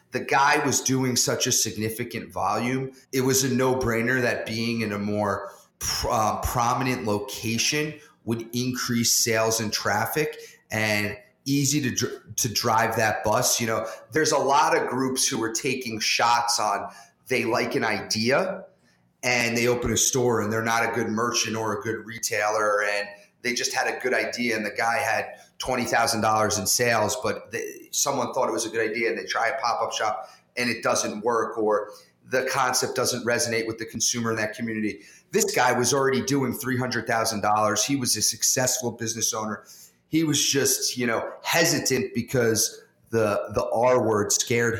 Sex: male